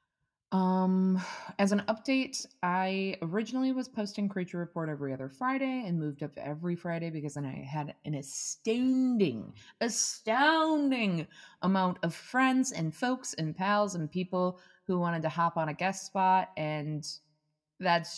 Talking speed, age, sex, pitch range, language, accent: 145 wpm, 20-39, female, 155-205 Hz, English, American